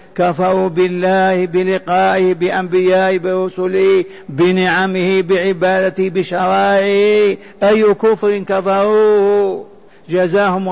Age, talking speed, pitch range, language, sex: 50-69, 65 wpm, 180-200 Hz, Arabic, male